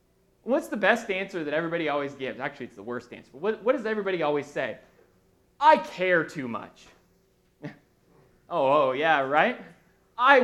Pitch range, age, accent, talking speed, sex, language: 140-200 Hz, 30-49, American, 160 wpm, male, English